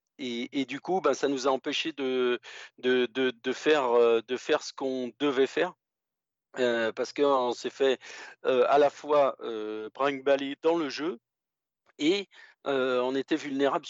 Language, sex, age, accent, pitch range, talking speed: French, male, 40-59, French, 115-145 Hz, 175 wpm